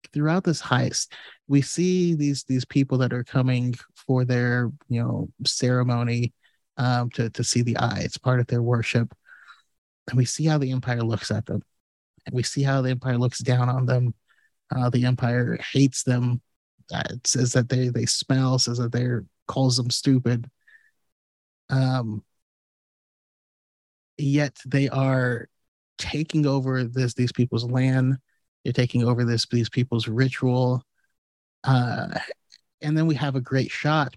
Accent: American